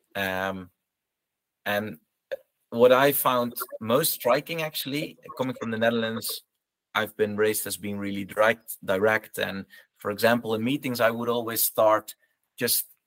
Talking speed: 140 wpm